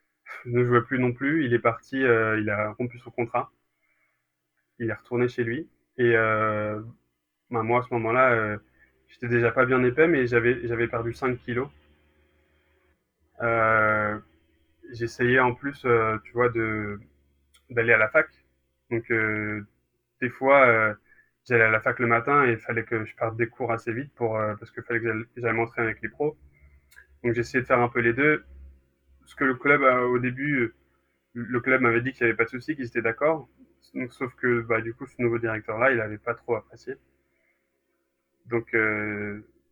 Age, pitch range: 20-39, 105-125 Hz